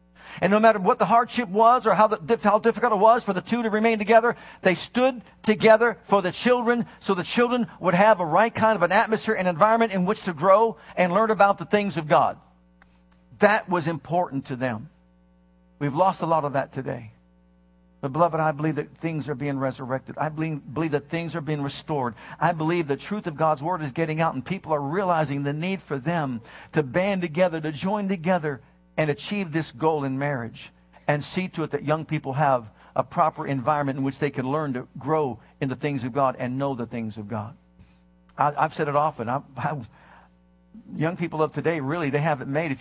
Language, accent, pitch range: English, American, 125-175 Hz